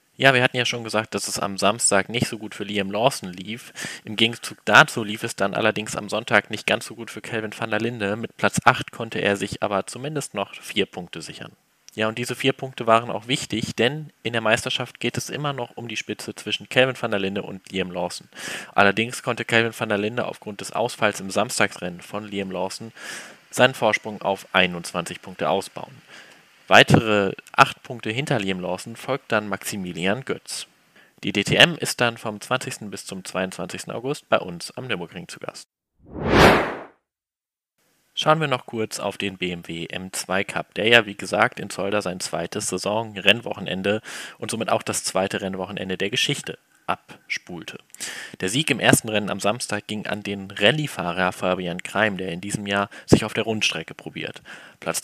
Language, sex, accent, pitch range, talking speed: German, male, German, 100-120 Hz, 185 wpm